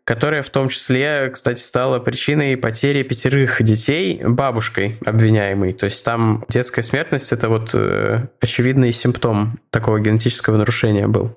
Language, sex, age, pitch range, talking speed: Russian, male, 20-39, 115-135 Hz, 135 wpm